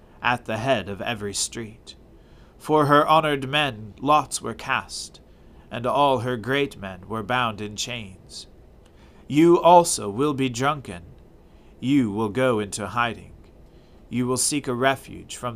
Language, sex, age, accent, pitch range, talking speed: English, male, 40-59, American, 95-140 Hz, 145 wpm